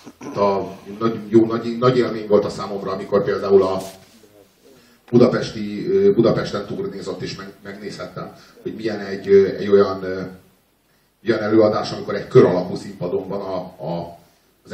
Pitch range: 95-120 Hz